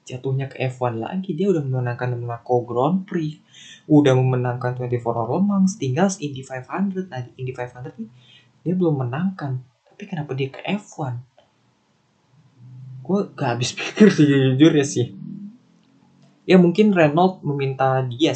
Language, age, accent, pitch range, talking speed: Indonesian, 20-39, native, 125-160 Hz, 130 wpm